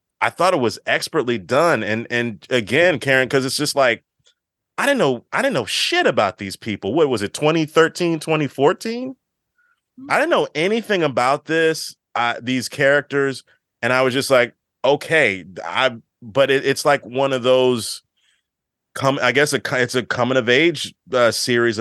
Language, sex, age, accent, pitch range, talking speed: English, male, 30-49, American, 105-135 Hz, 175 wpm